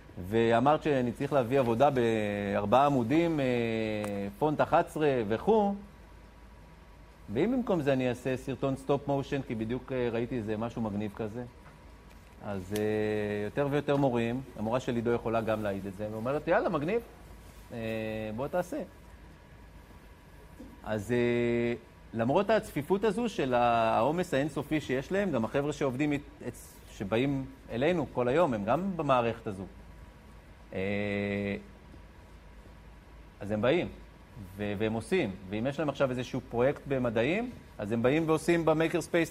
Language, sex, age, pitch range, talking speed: Hebrew, male, 40-59, 100-145 Hz, 130 wpm